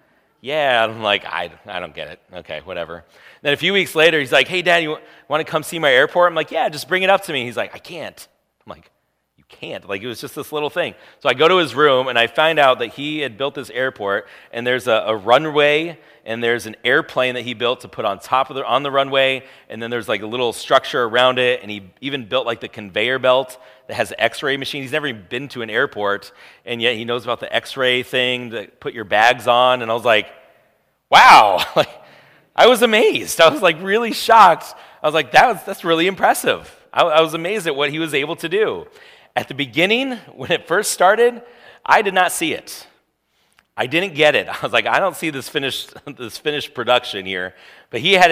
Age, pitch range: 30-49, 115-155 Hz